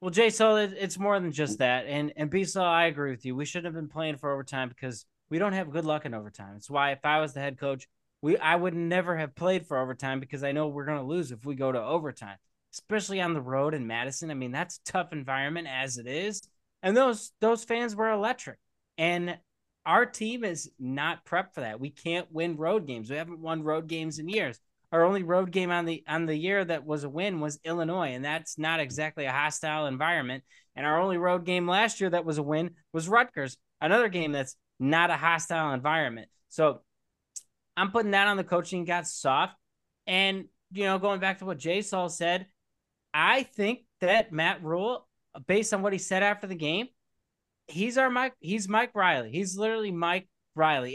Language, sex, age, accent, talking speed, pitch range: English, male, 20-39, American, 215 wpm, 145-190 Hz